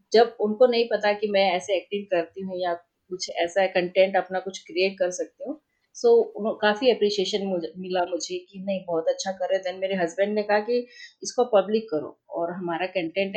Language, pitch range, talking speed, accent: Hindi, 185-235 Hz, 195 wpm, native